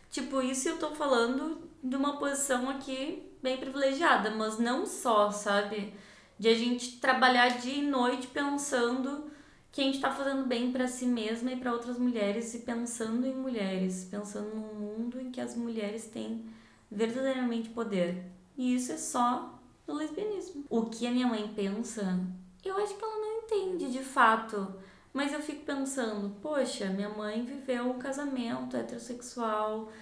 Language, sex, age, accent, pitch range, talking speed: Portuguese, female, 20-39, Brazilian, 215-270 Hz, 160 wpm